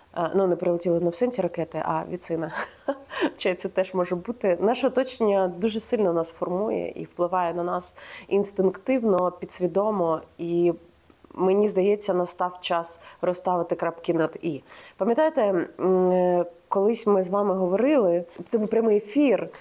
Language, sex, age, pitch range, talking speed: Ukrainian, female, 30-49, 175-220 Hz, 130 wpm